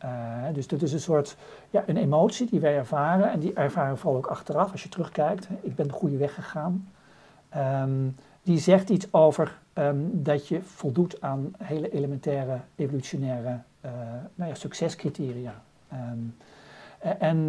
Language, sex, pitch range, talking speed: Dutch, male, 145-180 Hz, 160 wpm